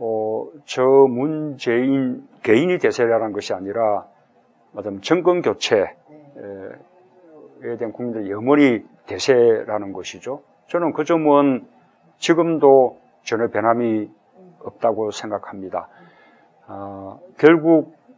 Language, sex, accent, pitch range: Korean, male, native, 105-145 Hz